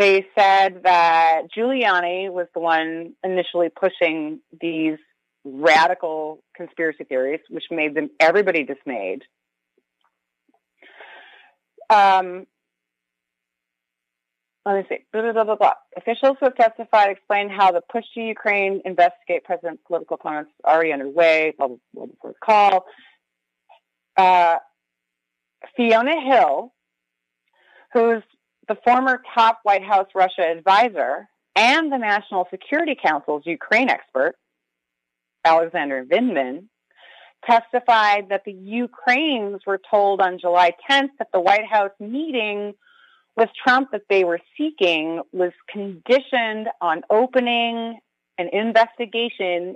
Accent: American